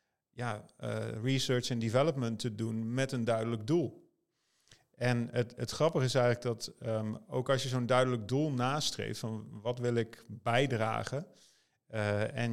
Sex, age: male, 40-59